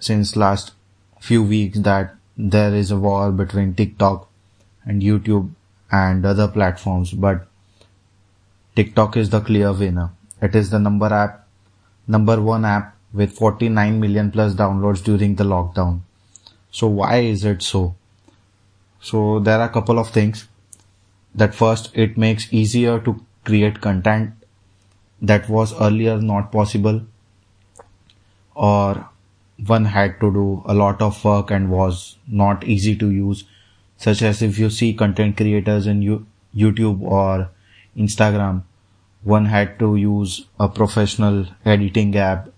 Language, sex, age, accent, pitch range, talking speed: English, male, 20-39, Indian, 100-110 Hz, 135 wpm